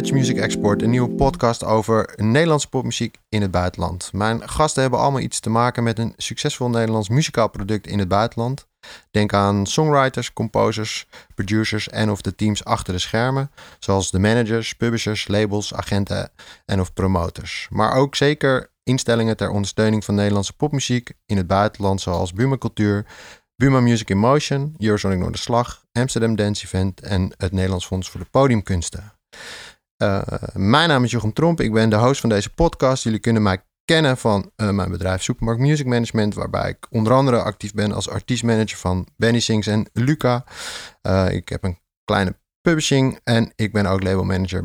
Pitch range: 100-125 Hz